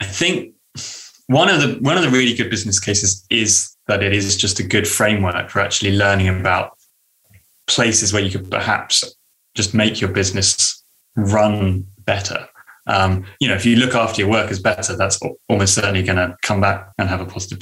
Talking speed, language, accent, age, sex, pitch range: 190 wpm, English, British, 20-39, male, 95-115 Hz